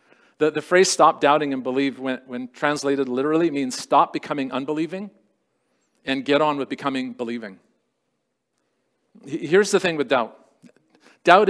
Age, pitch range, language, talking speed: 50-69, 135-170 Hz, English, 130 wpm